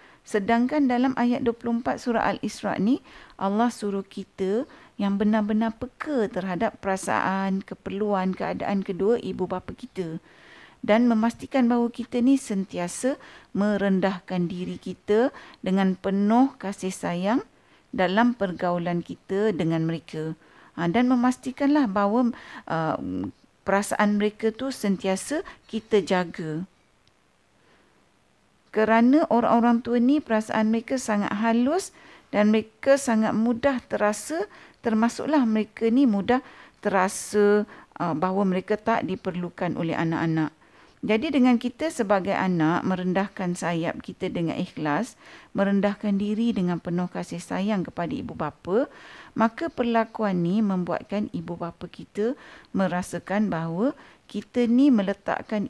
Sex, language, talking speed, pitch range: female, Malay, 115 wpm, 185-240 Hz